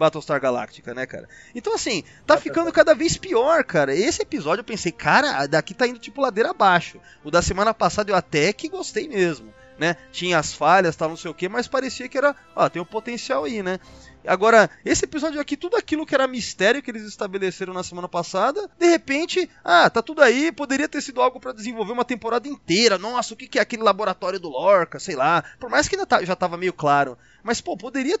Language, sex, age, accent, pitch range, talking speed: Portuguese, male, 20-39, Brazilian, 180-290 Hz, 215 wpm